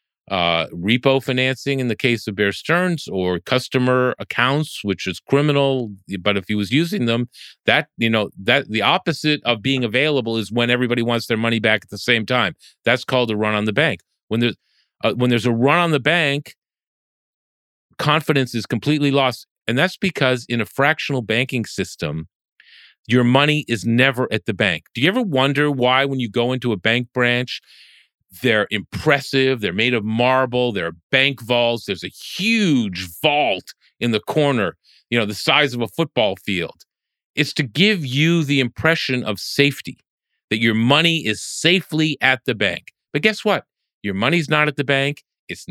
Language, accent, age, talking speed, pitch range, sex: English, American, 40-59, 180 wpm, 110-145 Hz, male